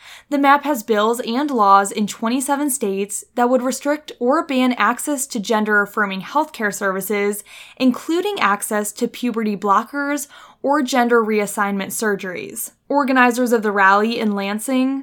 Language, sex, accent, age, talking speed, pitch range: English, female, American, 10-29, 140 wpm, 210-285 Hz